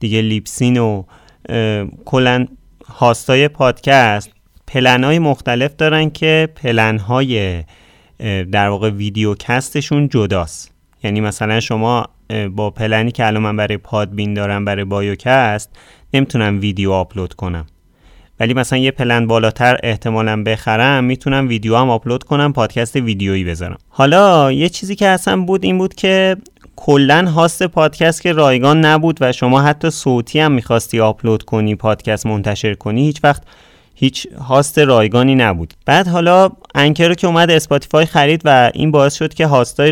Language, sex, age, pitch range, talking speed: Persian, male, 30-49, 105-150 Hz, 140 wpm